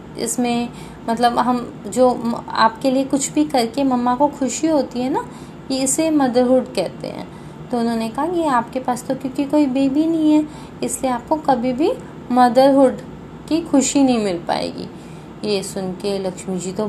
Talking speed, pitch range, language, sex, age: 170 wpm, 210-275 Hz, Hindi, female, 20-39